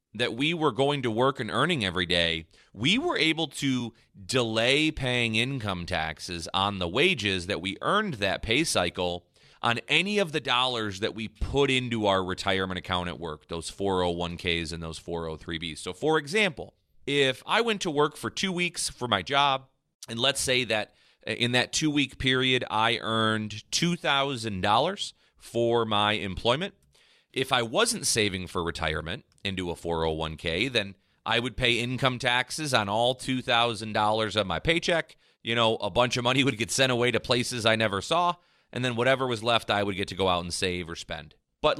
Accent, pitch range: American, 95-130 Hz